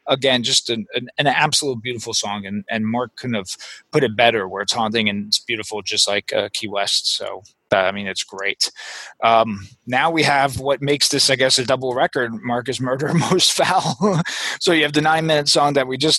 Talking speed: 215 wpm